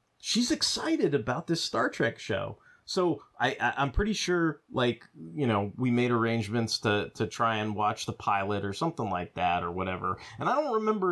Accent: American